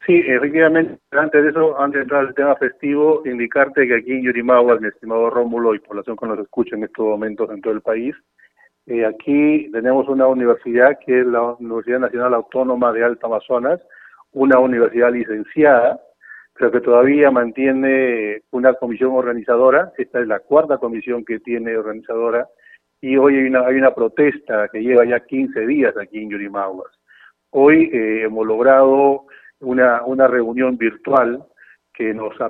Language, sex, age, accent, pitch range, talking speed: Spanish, male, 40-59, Argentinian, 115-140 Hz, 165 wpm